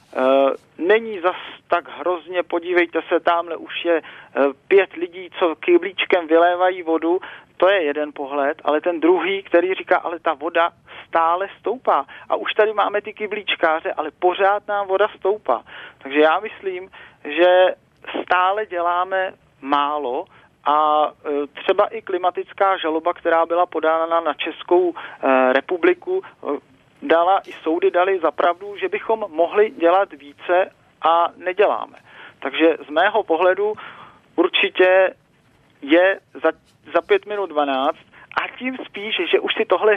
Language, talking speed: Czech, 130 wpm